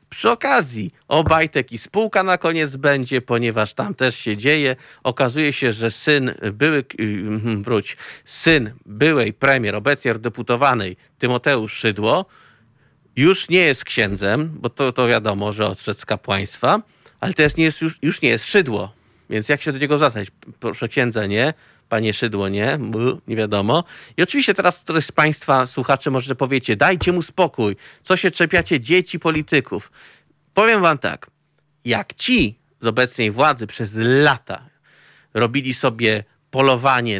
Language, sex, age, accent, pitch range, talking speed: Polish, male, 40-59, native, 110-150 Hz, 145 wpm